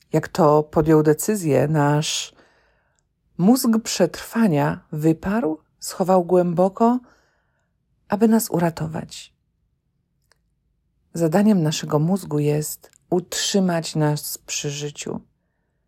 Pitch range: 155-205 Hz